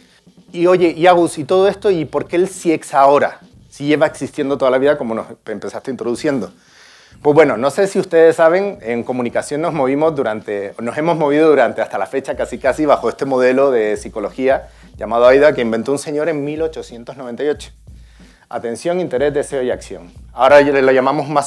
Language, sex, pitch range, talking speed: Spanish, male, 120-165 Hz, 185 wpm